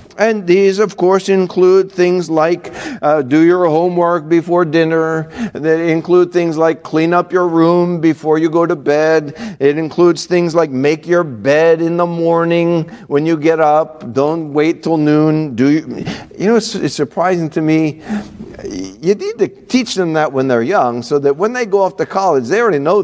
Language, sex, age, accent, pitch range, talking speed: English, male, 50-69, American, 155-190 Hz, 190 wpm